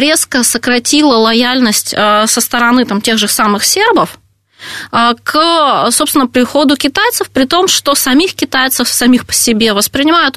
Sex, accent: female, native